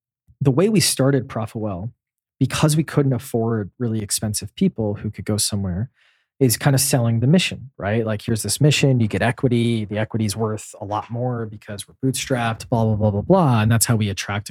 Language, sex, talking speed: English, male, 205 wpm